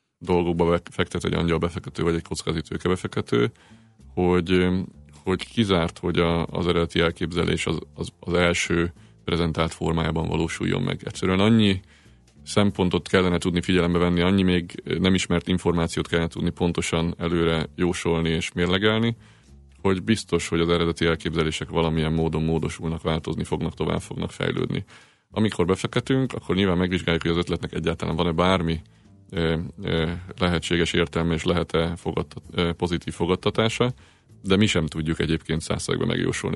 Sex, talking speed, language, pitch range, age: male, 135 wpm, Hungarian, 85-95 Hz, 30-49